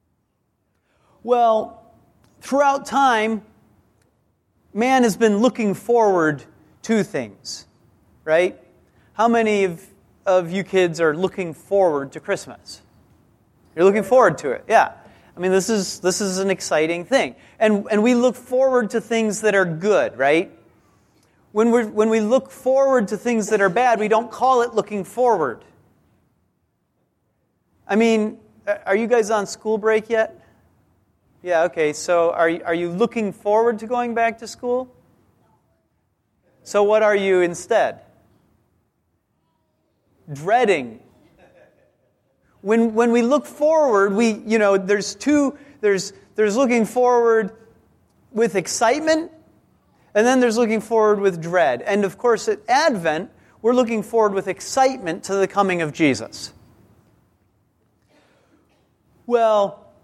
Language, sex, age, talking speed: English, male, 30-49, 130 wpm